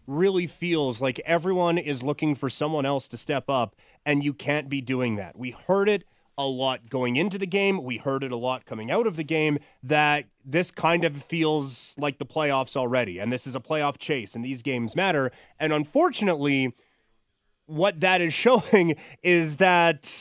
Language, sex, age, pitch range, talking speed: English, male, 30-49, 130-170 Hz, 190 wpm